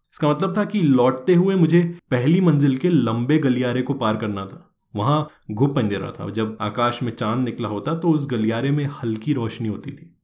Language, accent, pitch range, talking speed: Hindi, native, 115-155 Hz, 200 wpm